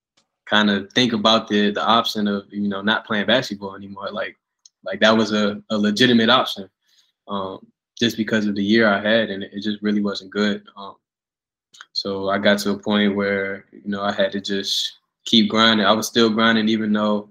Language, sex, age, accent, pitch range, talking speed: English, male, 20-39, American, 100-110 Hz, 200 wpm